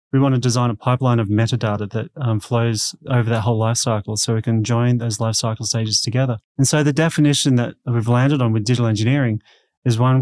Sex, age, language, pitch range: male, 30-49, English, 115-130 Hz